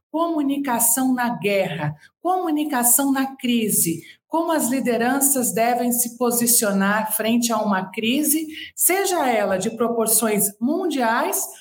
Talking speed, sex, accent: 110 wpm, female, Brazilian